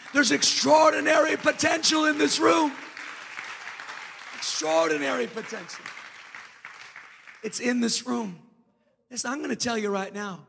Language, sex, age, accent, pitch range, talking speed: English, male, 40-59, American, 165-235 Hz, 110 wpm